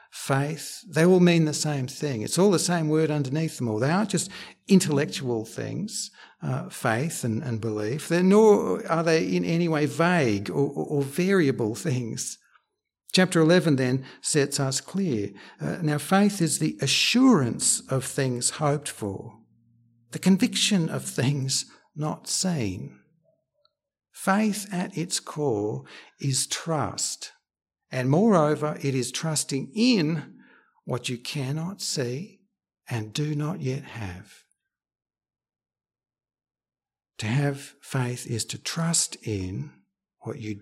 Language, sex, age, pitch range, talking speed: English, male, 60-79, 125-170 Hz, 130 wpm